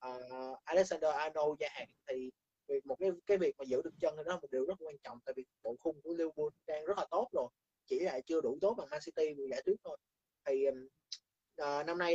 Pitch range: 145-190 Hz